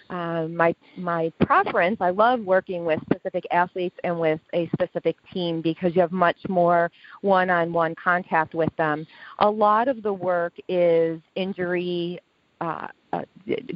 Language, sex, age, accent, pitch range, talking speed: English, female, 40-59, American, 160-185 Hz, 140 wpm